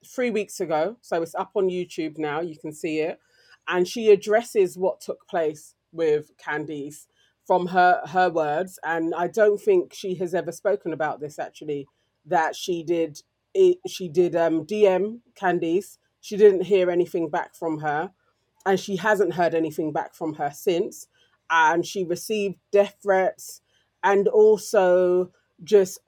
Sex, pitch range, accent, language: female, 160-200 Hz, British, English